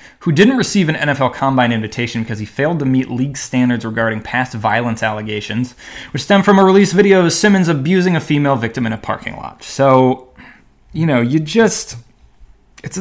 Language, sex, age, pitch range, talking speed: English, male, 20-39, 115-140 Hz, 185 wpm